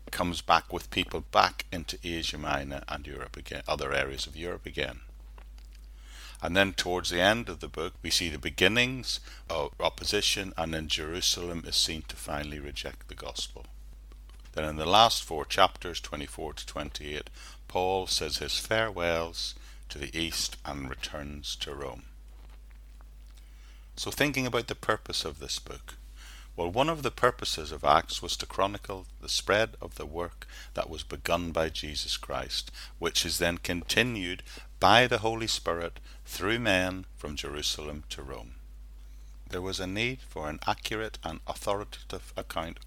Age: 60-79